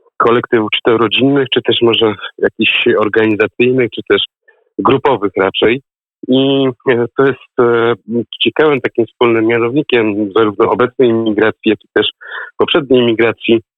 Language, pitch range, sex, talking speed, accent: Polish, 110-125 Hz, male, 120 wpm, native